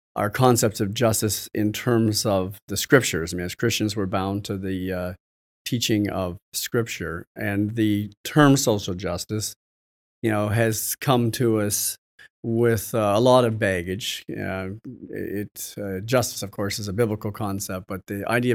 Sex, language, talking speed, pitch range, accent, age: male, English, 165 wpm, 95-115 Hz, American, 40-59